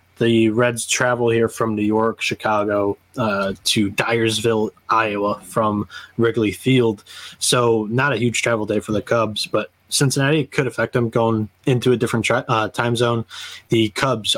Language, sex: English, male